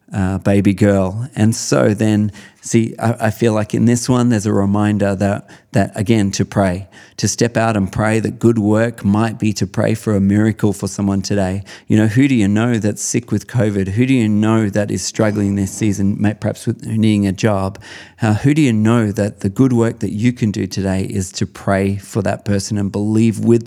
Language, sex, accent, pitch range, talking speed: English, male, Australian, 100-115 Hz, 220 wpm